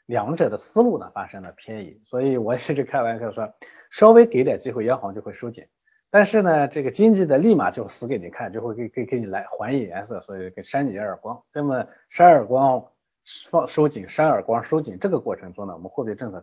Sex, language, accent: male, Chinese, native